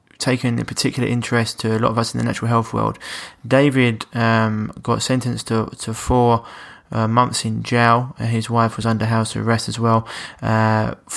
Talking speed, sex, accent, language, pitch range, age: 190 wpm, male, British, English, 110-125 Hz, 20-39